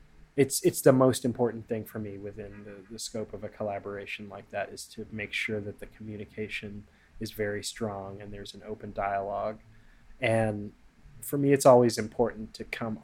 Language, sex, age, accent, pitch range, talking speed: English, male, 20-39, American, 100-120 Hz, 185 wpm